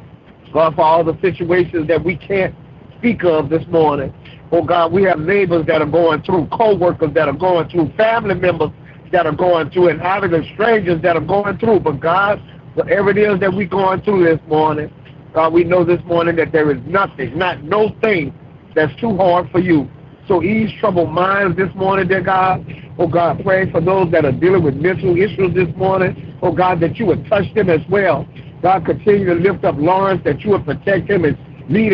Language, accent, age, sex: English, American, 50-69, male